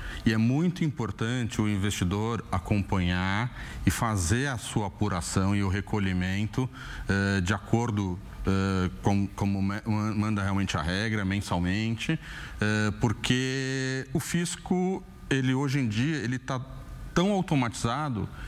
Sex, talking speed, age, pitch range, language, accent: male, 115 wpm, 40-59, 105-140 Hz, Portuguese, Brazilian